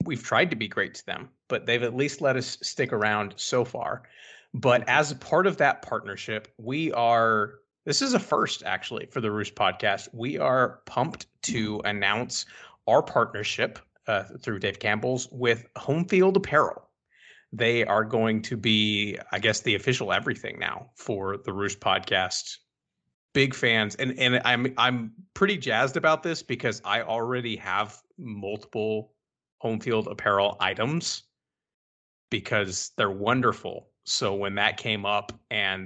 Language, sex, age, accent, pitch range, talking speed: English, male, 30-49, American, 105-125 Hz, 155 wpm